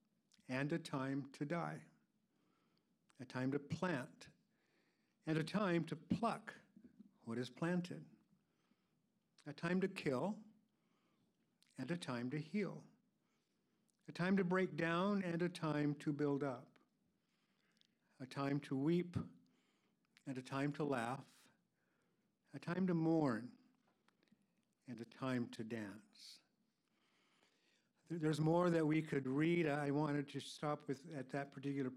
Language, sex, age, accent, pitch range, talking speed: English, male, 60-79, American, 135-195 Hz, 130 wpm